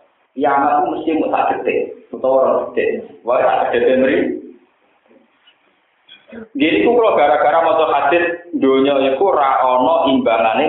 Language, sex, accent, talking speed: Indonesian, male, native, 95 wpm